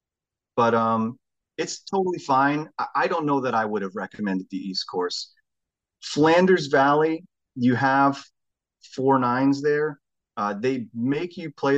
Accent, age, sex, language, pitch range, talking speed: American, 30-49, male, English, 110-150 Hz, 150 wpm